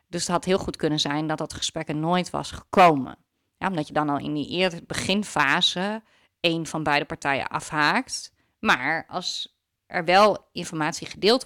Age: 30-49